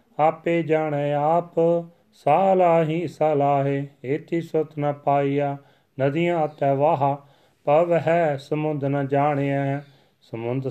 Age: 40-59